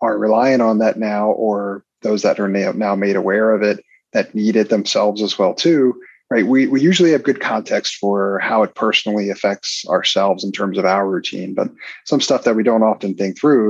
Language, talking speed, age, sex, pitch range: English, 210 wpm, 30-49, male, 100-125 Hz